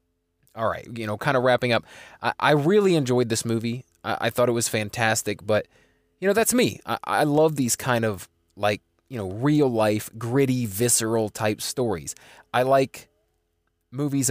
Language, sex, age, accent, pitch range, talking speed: English, male, 20-39, American, 95-130 Hz, 175 wpm